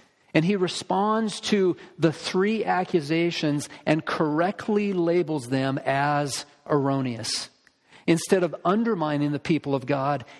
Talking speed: 115 wpm